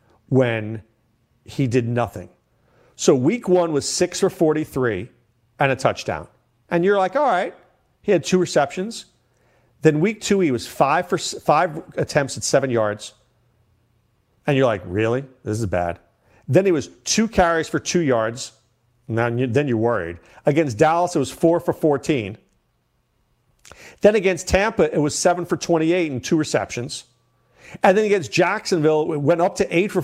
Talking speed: 170 wpm